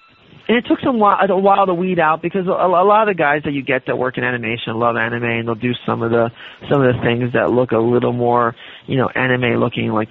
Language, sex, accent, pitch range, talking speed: English, male, American, 115-150 Hz, 260 wpm